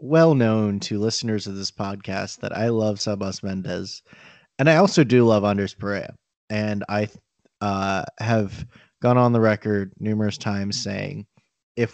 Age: 30-49